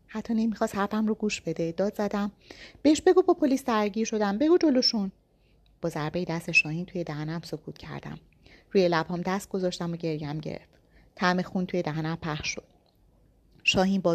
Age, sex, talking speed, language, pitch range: 30-49, female, 160 wpm, Persian, 160-200 Hz